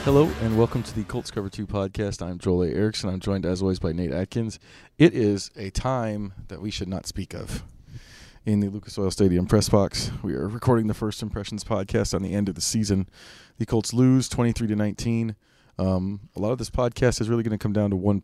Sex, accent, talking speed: male, American, 220 wpm